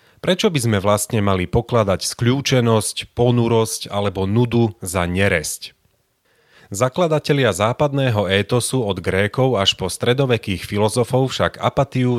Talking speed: 115 wpm